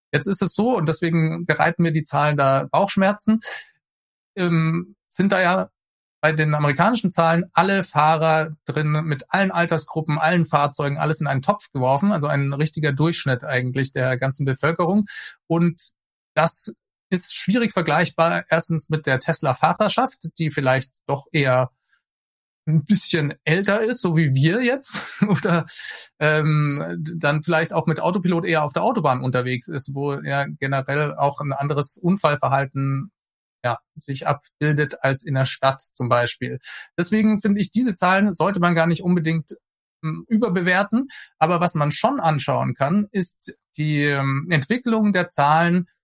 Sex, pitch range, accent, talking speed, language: male, 140-180 Hz, German, 150 wpm, German